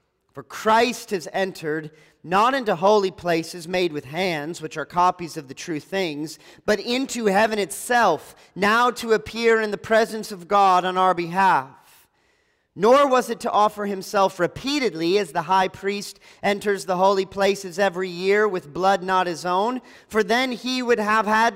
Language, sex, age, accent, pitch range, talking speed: English, male, 40-59, American, 165-220 Hz, 170 wpm